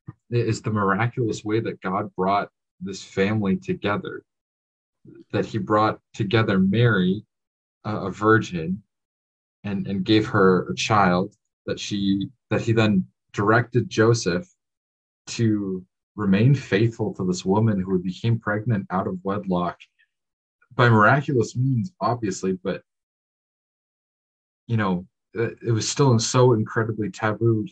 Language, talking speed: English, 120 wpm